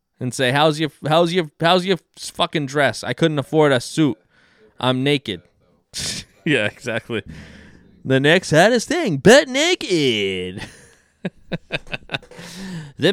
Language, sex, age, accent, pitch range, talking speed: English, male, 20-39, American, 115-155 Hz, 120 wpm